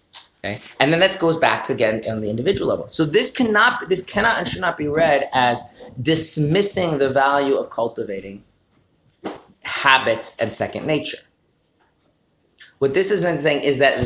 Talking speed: 160 wpm